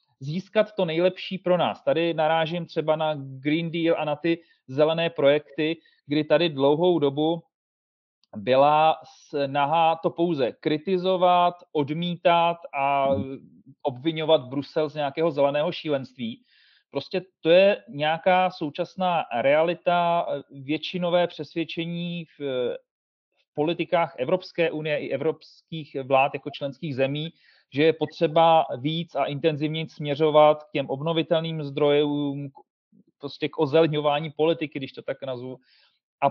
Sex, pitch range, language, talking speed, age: male, 145-175 Hz, Czech, 120 wpm, 40-59